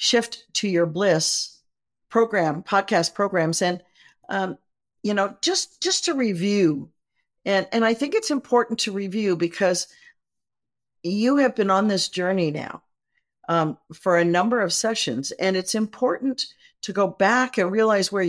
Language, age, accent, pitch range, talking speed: English, 50-69, American, 180-235 Hz, 150 wpm